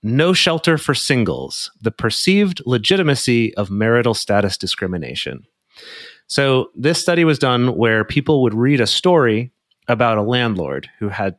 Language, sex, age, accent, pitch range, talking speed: English, male, 30-49, American, 100-130 Hz, 140 wpm